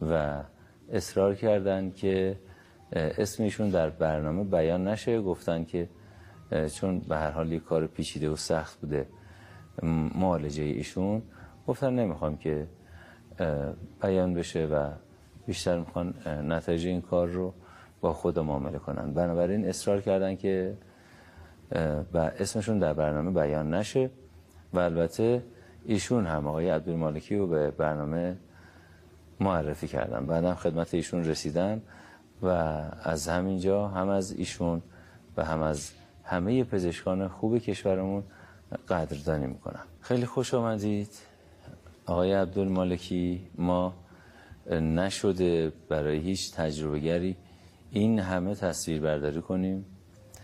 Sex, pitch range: male, 80-95 Hz